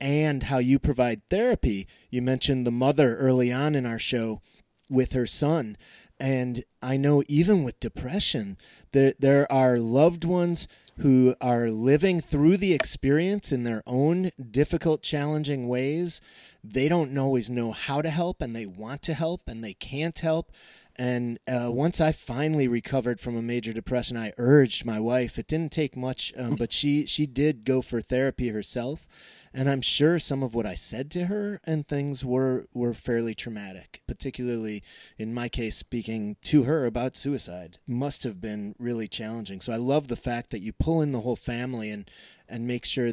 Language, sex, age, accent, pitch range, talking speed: English, male, 30-49, American, 120-145 Hz, 180 wpm